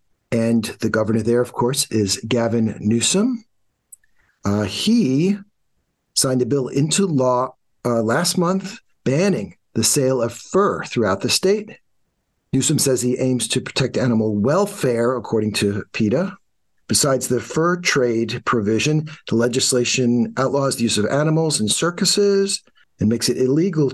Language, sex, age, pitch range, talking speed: English, male, 50-69, 120-145 Hz, 140 wpm